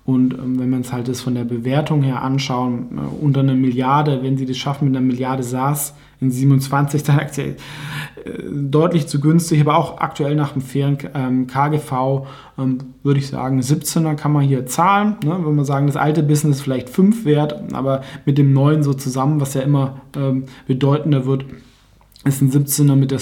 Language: German